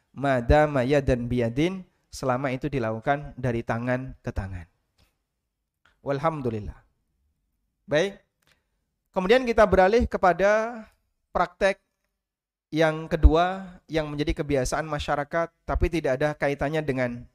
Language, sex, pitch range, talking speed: Indonesian, male, 125-165 Hz, 95 wpm